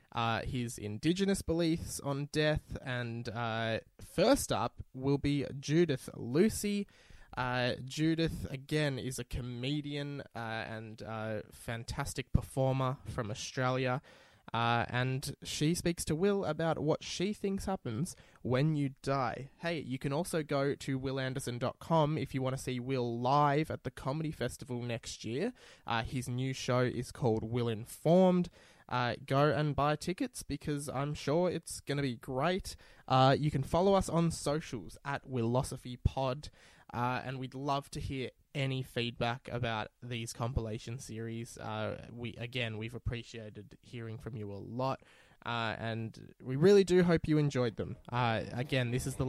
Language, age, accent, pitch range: English, 20-39, Australian, 120-150 Hz